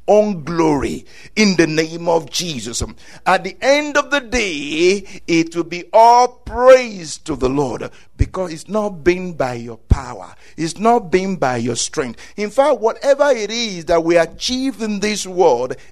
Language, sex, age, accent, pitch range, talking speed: English, male, 60-79, Nigerian, 180-275 Hz, 170 wpm